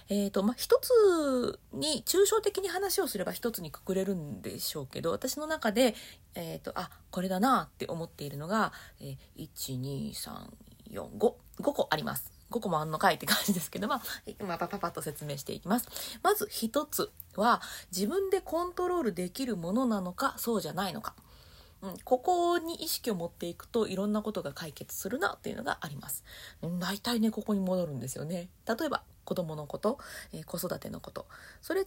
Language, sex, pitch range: Japanese, female, 170-260 Hz